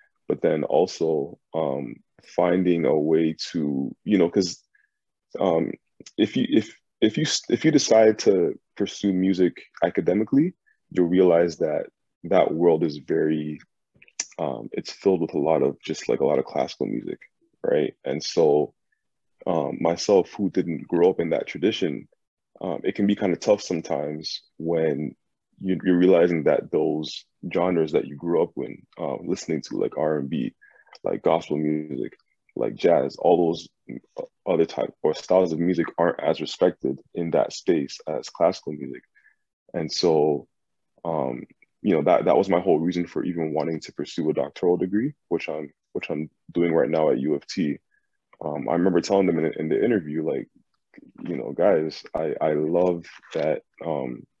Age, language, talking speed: 20-39, English, 170 wpm